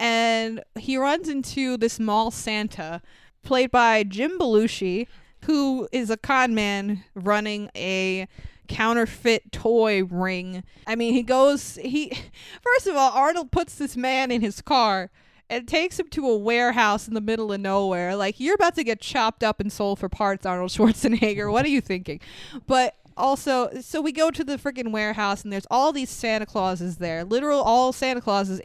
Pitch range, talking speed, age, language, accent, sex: 210-270 Hz, 175 wpm, 20-39, English, American, female